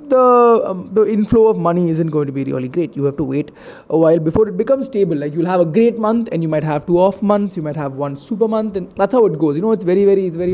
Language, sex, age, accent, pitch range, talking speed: Tamil, male, 20-39, native, 155-215 Hz, 300 wpm